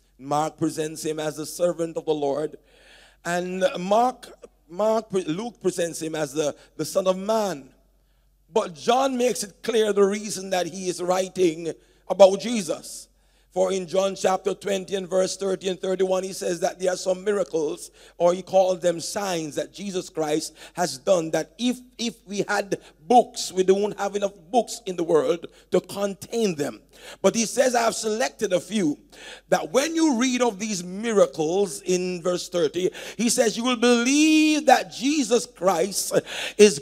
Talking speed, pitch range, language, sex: 170 wpm, 180-235 Hz, English, male